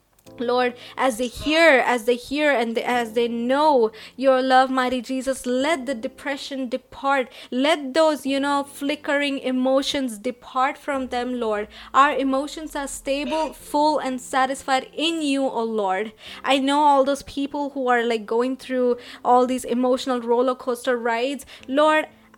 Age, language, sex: 20-39, English, female